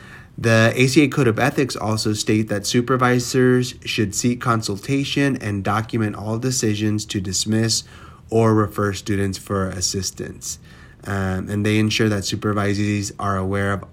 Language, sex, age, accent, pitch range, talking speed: English, male, 30-49, American, 100-120 Hz, 140 wpm